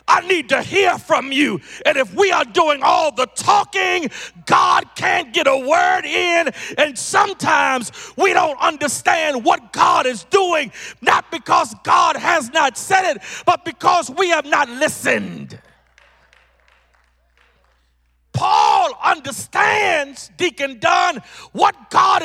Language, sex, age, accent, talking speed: English, male, 40-59, American, 130 wpm